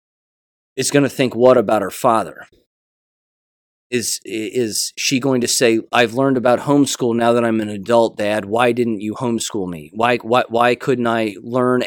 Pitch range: 110-135 Hz